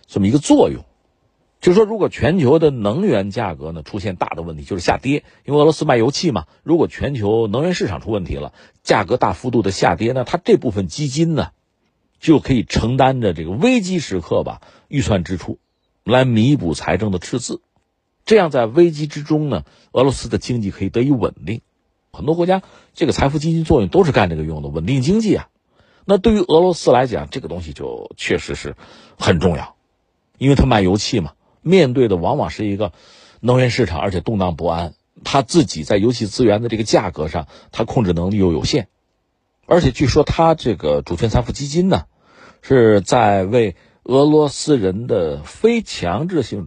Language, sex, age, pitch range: Chinese, male, 50-69, 95-150 Hz